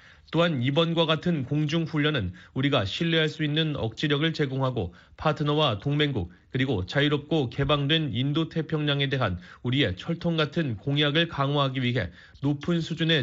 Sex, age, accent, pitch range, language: male, 30-49, native, 125-160 Hz, Korean